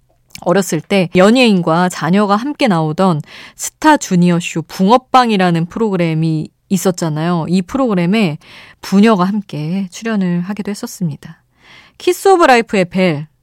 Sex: female